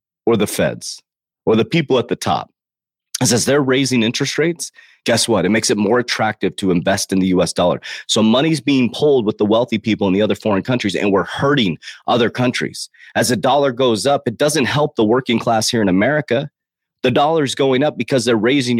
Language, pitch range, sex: English, 115-140 Hz, male